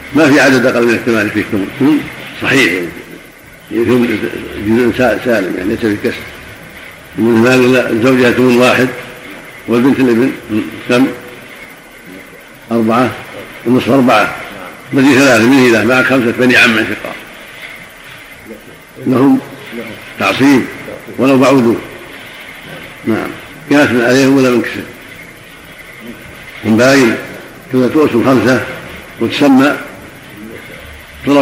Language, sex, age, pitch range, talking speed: Arabic, male, 60-79, 115-130 Hz, 100 wpm